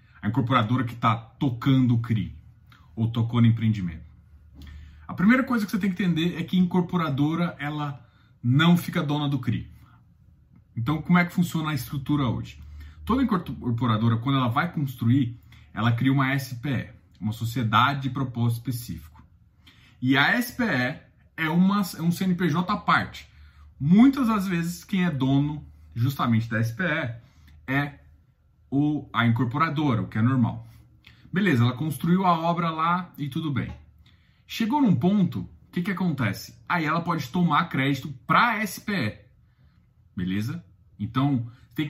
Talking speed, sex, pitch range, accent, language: 150 wpm, male, 115-170 Hz, Brazilian, Portuguese